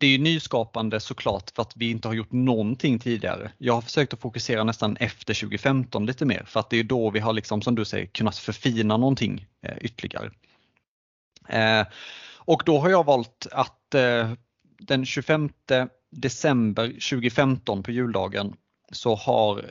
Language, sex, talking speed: Swedish, male, 160 wpm